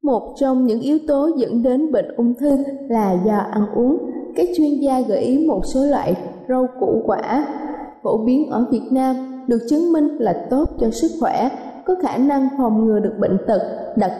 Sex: female